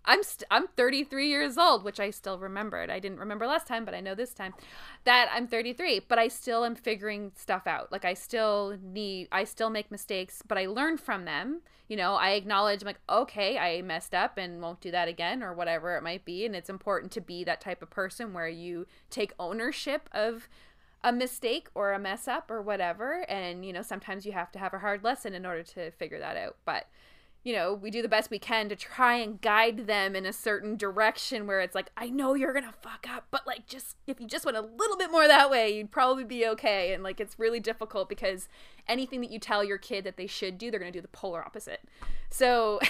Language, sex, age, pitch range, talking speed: English, female, 20-39, 190-245 Hz, 240 wpm